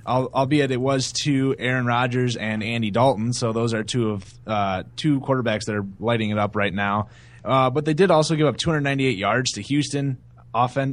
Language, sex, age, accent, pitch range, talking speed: English, male, 20-39, American, 115-140 Hz, 205 wpm